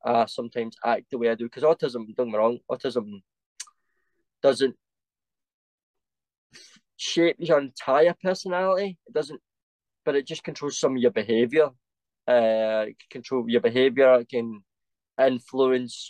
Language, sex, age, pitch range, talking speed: English, male, 20-39, 115-135 Hz, 140 wpm